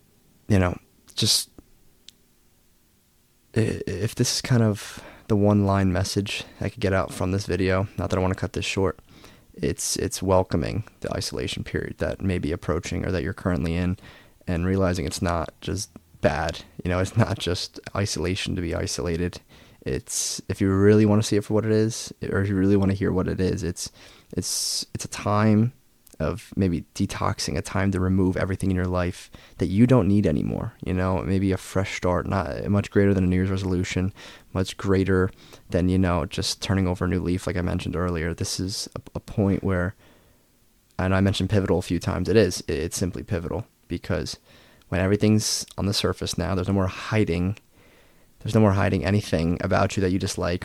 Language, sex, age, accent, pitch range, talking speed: English, male, 20-39, American, 90-105 Hz, 195 wpm